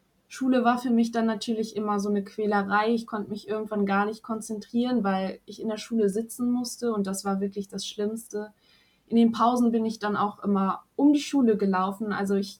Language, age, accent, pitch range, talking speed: German, 20-39, German, 200-225 Hz, 205 wpm